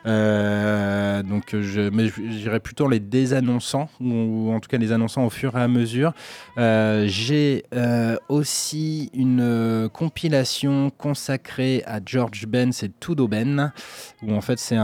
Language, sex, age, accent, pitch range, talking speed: French, male, 20-39, French, 105-135 Hz, 145 wpm